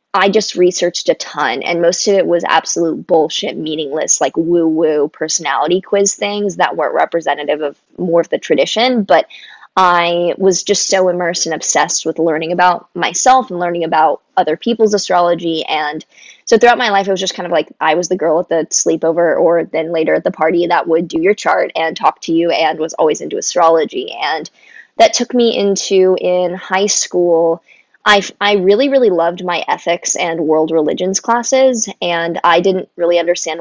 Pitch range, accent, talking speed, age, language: 165-195 Hz, American, 190 wpm, 20-39, English